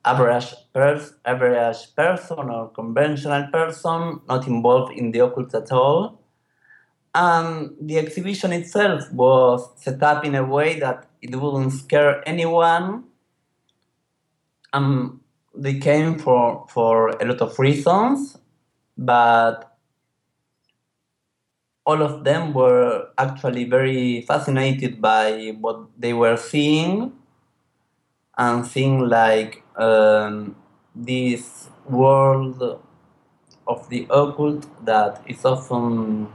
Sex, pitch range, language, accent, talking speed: male, 120-145 Hz, English, Spanish, 105 wpm